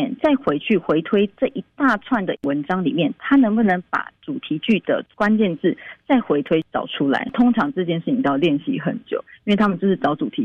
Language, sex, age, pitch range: Chinese, female, 30-49, 170-255 Hz